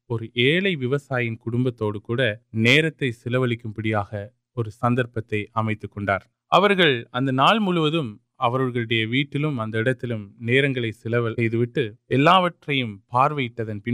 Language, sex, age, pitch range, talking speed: Urdu, male, 20-39, 110-140 Hz, 45 wpm